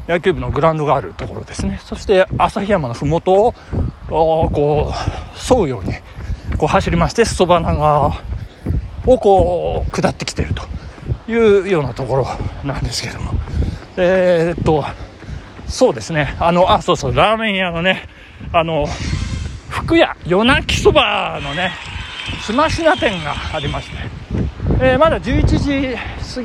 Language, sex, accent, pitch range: Japanese, male, native, 140-220 Hz